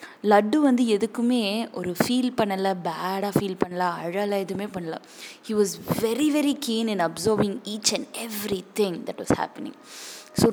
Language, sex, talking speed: Tamil, female, 155 wpm